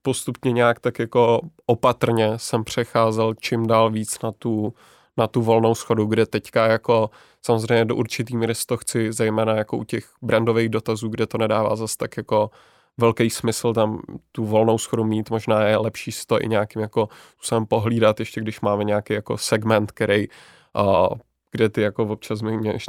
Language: Czech